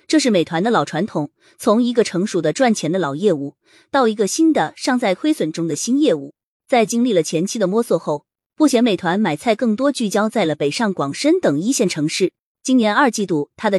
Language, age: Chinese, 20-39